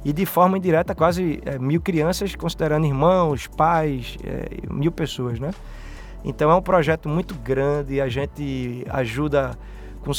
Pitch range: 135-170 Hz